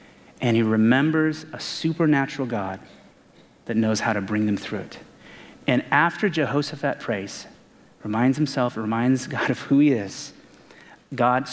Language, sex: English, male